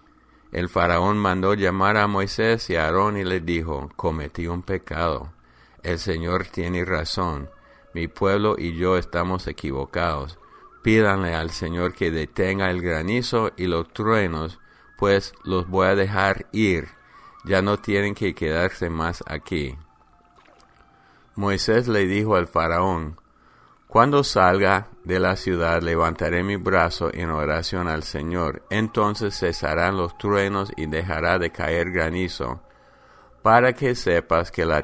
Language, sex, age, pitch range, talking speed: English, male, 50-69, 80-100 Hz, 135 wpm